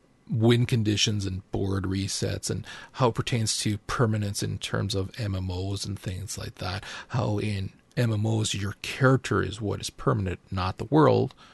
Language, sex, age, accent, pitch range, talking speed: English, male, 40-59, American, 100-125 Hz, 160 wpm